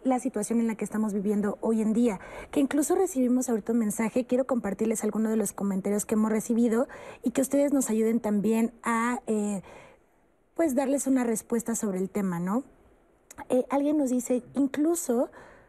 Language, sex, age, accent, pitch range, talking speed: Spanish, female, 30-49, Mexican, 210-255 Hz, 175 wpm